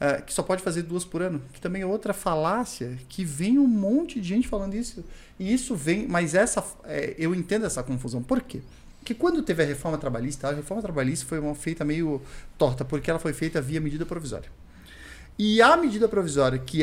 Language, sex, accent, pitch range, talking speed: Portuguese, male, Brazilian, 145-200 Hz, 210 wpm